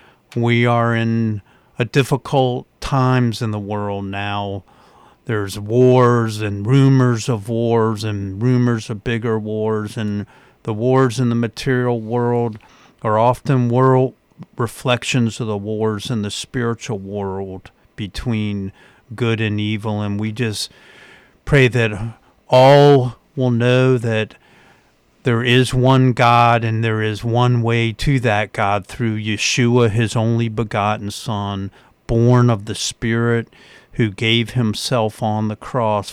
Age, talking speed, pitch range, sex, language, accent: 50-69, 135 wpm, 105-125 Hz, male, English, American